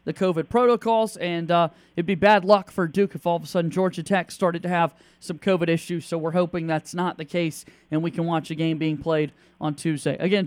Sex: male